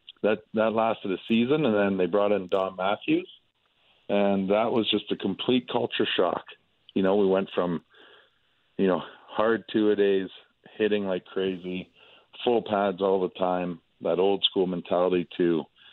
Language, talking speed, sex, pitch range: English, 155 wpm, male, 90-105 Hz